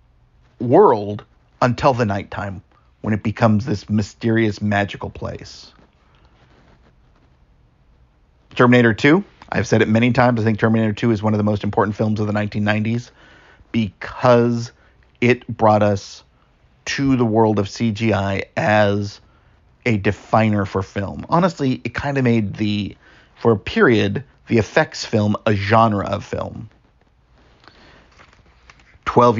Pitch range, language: 100-120 Hz, English